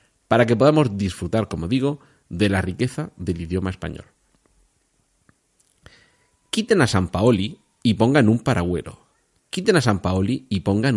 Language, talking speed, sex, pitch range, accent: Spanish, 140 wpm, male, 85-115 Hz, Spanish